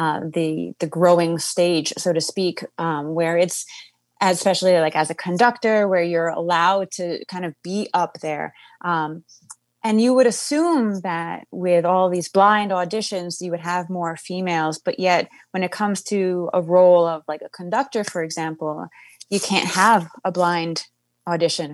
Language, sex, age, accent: English, female, 20-39, American